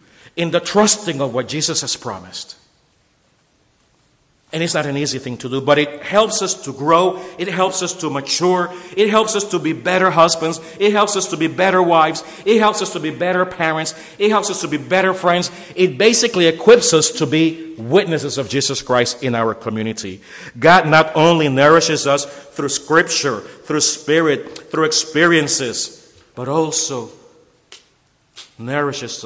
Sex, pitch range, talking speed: male, 140-175 Hz, 170 wpm